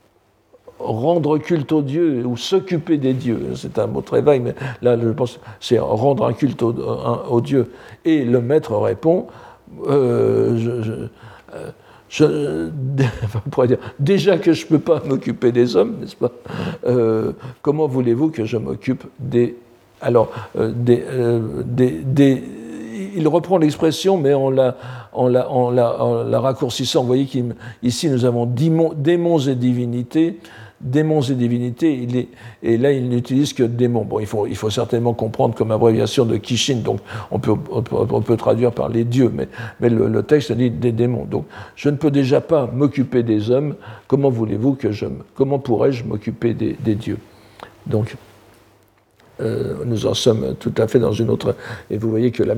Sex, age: male, 60-79